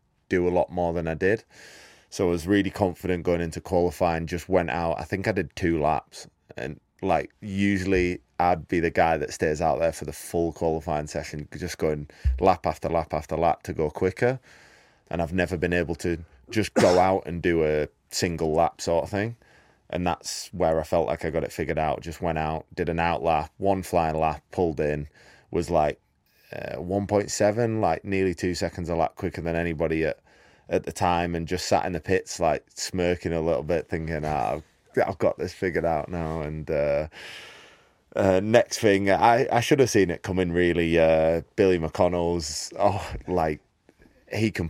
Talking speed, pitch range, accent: 195 wpm, 80-95 Hz, British